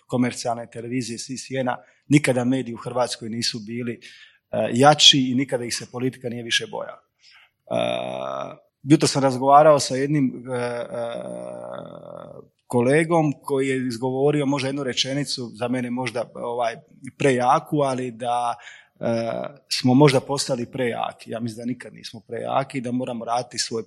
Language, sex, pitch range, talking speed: Croatian, male, 120-135 Hz, 150 wpm